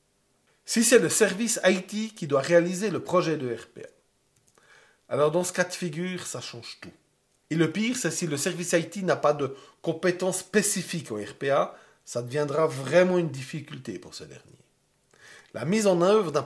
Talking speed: 180 wpm